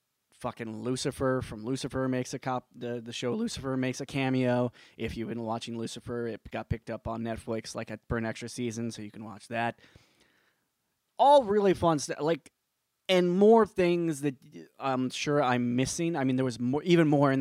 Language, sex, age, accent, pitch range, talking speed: English, male, 20-39, American, 120-150 Hz, 195 wpm